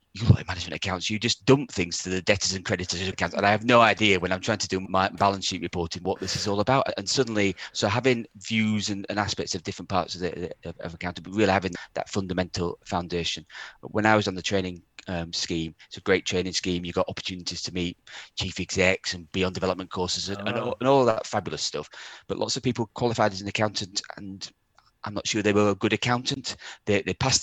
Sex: male